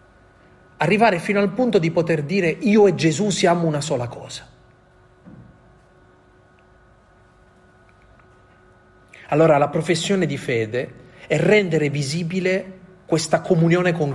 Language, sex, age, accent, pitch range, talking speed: Italian, male, 40-59, native, 120-175 Hz, 105 wpm